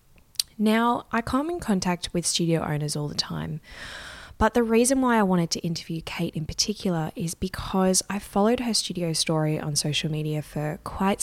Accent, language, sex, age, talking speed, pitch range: Australian, English, female, 20-39, 180 wpm, 155-200 Hz